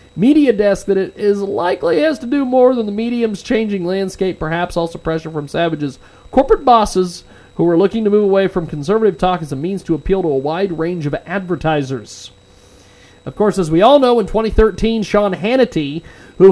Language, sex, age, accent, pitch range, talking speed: English, male, 40-59, American, 155-220 Hz, 195 wpm